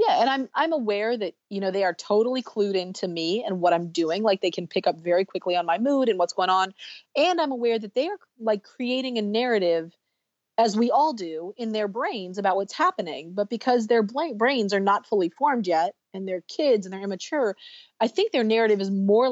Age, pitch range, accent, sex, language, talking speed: 30-49, 180-230 Hz, American, female, English, 225 wpm